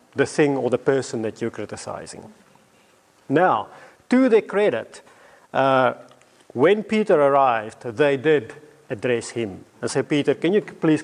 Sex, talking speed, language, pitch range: male, 140 wpm, English, 145-210 Hz